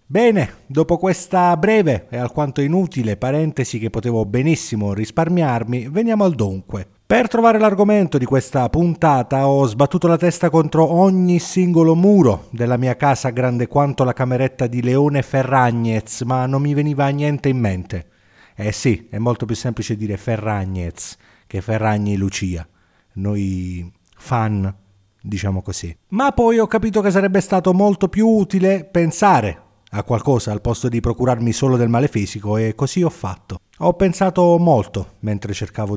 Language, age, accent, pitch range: Italian, 30-49, native, 105-170 Hz